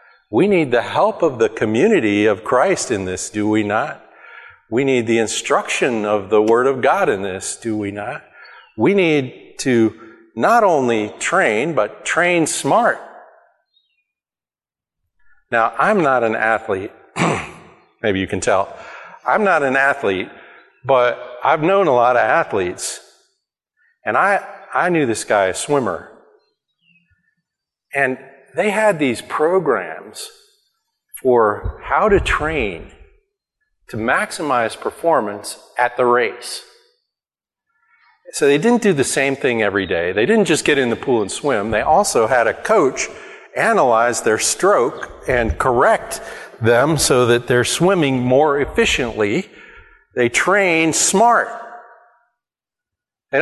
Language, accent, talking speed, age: English, American, 135 wpm, 50-69